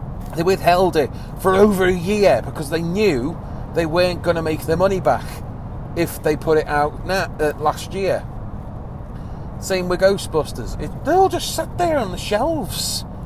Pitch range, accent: 145-195 Hz, British